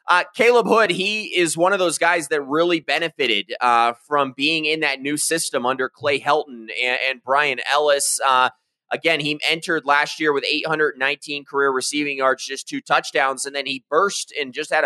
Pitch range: 140-170 Hz